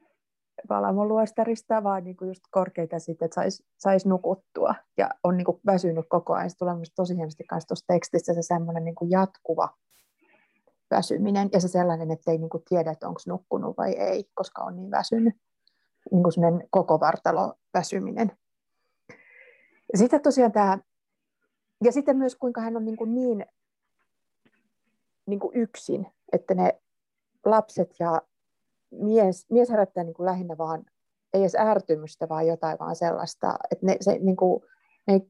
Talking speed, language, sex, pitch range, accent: 145 wpm, Finnish, female, 170-220 Hz, native